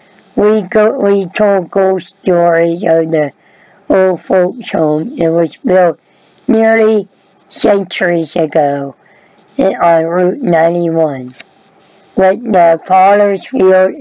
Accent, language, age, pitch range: American, English, 60-79, 165-200 Hz